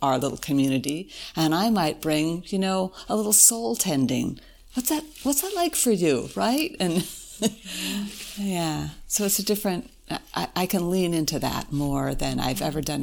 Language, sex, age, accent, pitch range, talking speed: English, female, 60-79, American, 145-205 Hz, 175 wpm